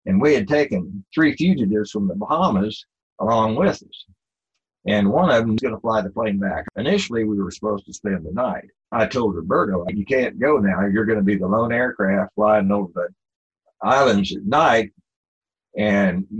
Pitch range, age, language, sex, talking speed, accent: 100-115 Hz, 60-79, English, male, 195 wpm, American